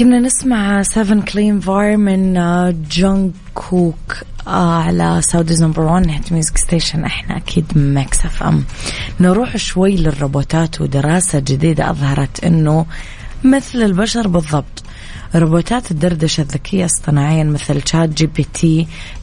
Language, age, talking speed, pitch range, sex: English, 20-39, 115 wpm, 150-180 Hz, female